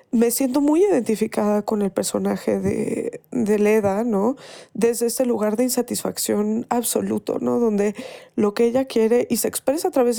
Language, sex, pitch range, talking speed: Spanish, female, 220-290 Hz, 165 wpm